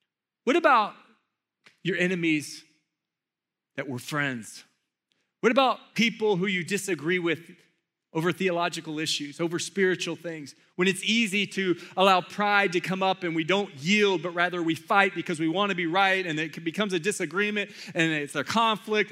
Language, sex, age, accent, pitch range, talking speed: English, male, 30-49, American, 165-205 Hz, 165 wpm